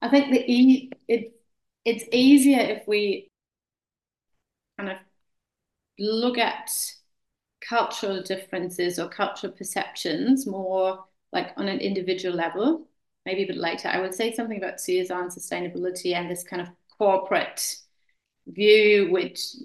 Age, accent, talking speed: 30-49, British, 120 wpm